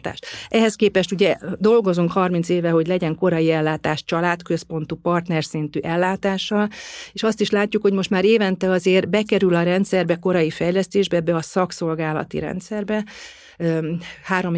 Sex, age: female, 40-59